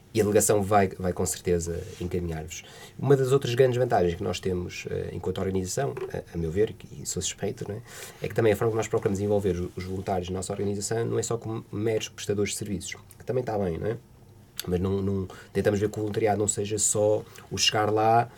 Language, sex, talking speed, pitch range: Portuguese, male, 230 wpm, 90-110 Hz